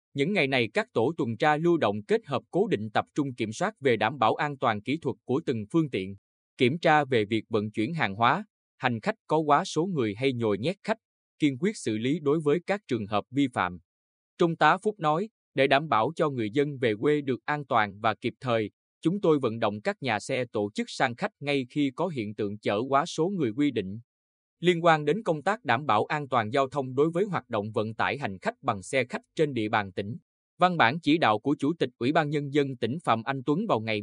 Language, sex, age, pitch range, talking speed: Vietnamese, male, 20-39, 115-155 Hz, 245 wpm